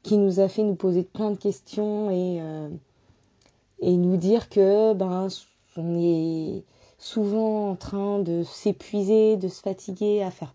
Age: 20-39